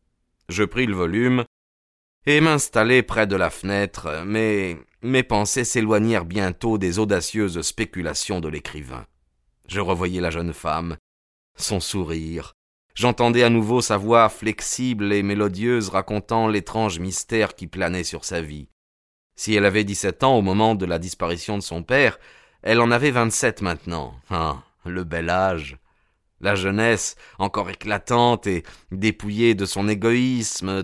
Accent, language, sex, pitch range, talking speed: French, French, male, 85-115 Hz, 145 wpm